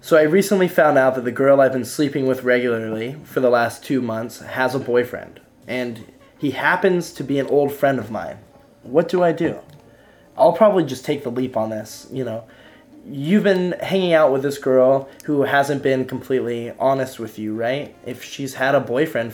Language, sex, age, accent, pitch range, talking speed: English, male, 20-39, American, 120-145 Hz, 200 wpm